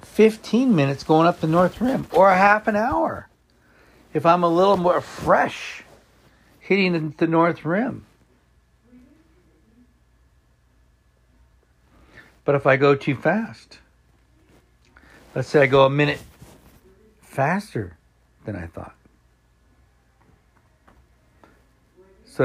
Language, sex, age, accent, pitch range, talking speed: English, male, 60-79, American, 105-170 Hz, 105 wpm